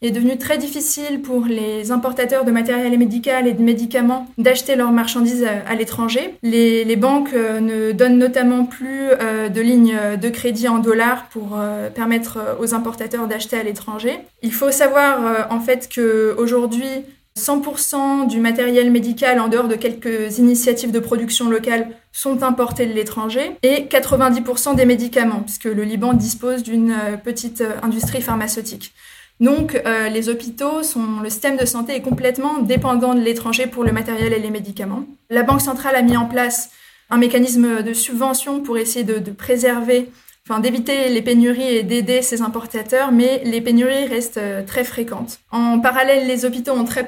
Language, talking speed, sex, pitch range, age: French, 165 wpm, female, 230-255 Hz, 20-39